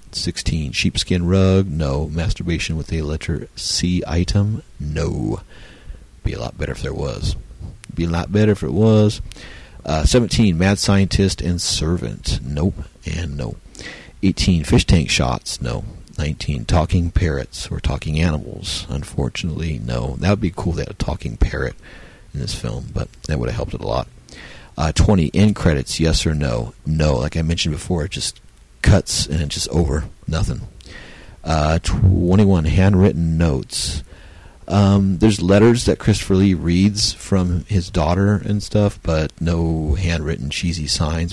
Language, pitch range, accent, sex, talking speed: English, 80-95 Hz, American, male, 160 wpm